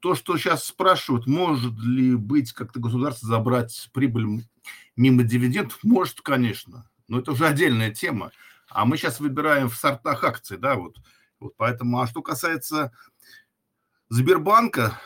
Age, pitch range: 50-69, 115-140 Hz